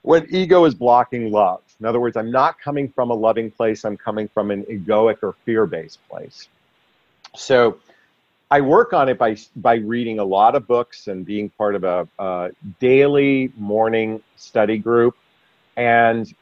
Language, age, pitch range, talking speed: English, 50-69, 105-130 Hz, 170 wpm